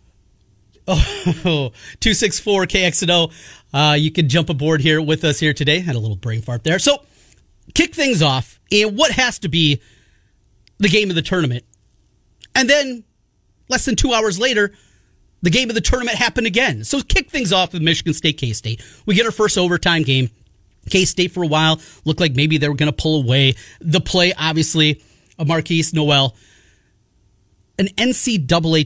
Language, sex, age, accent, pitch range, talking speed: English, male, 30-49, American, 115-195 Hz, 165 wpm